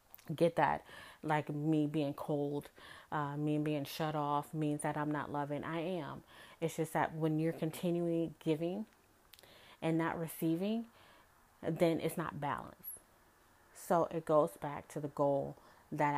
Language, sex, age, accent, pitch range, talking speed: English, female, 30-49, American, 155-180 Hz, 150 wpm